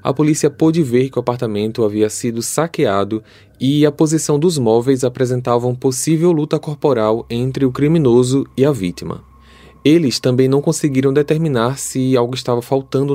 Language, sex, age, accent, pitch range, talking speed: Portuguese, male, 20-39, Brazilian, 110-140 Hz, 160 wpm